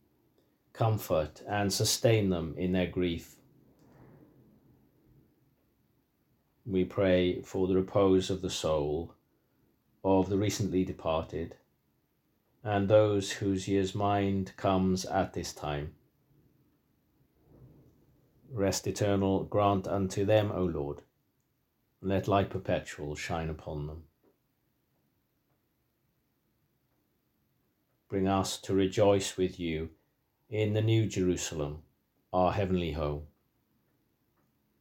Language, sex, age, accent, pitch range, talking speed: English, male, 40-59, British, 85-105 Hz, 95 wpm